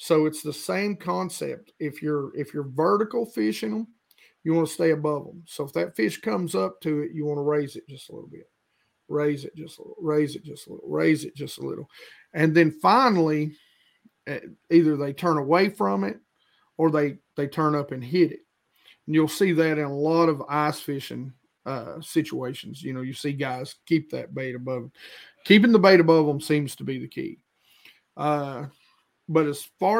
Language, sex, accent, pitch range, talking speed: English, male, American, 140-160 Hz, 200 wpm